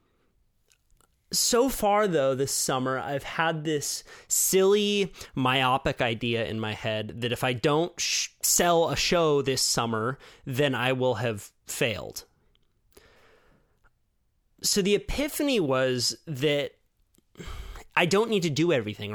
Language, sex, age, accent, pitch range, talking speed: English, male, 30-49, American, 120-165 Hz, 120 wpm